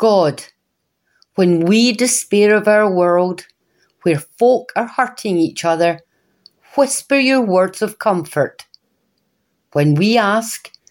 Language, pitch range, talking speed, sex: English, 170-230 Hz, 115 wpm, female